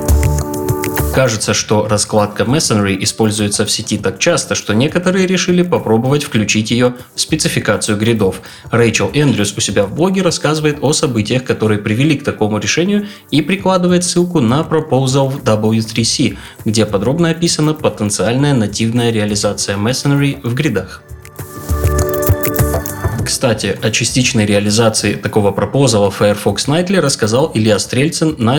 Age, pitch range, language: 20-39, 105-150 Hz, Russian